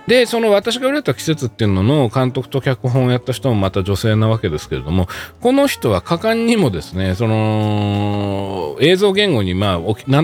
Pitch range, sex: 95-145 Hz, male